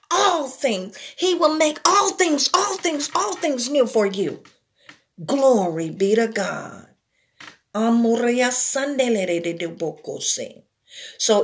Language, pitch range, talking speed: English, 185-245 Hz, 100 wpm